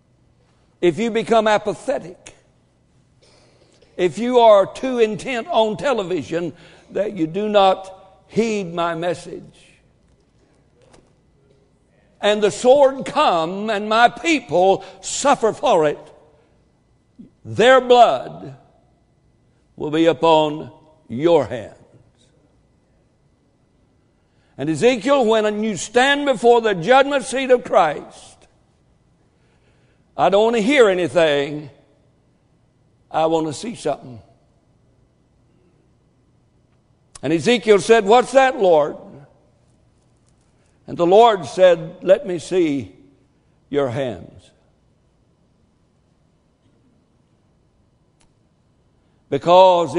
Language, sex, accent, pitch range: English, male, American, 145-225 Hz